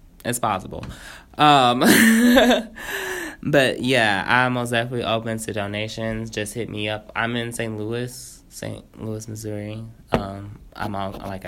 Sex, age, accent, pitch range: male, 20-39, American, 105-120 Hz